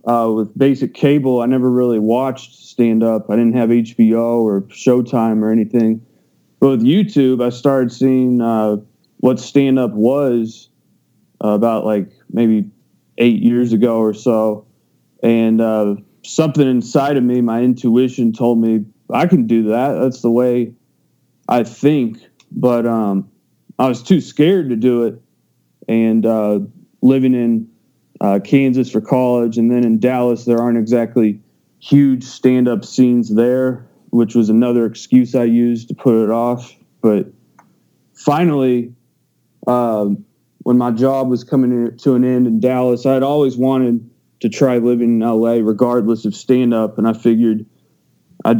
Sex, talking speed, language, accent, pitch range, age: male, 150 wpm, English, American, 115-125 Hz, 20-39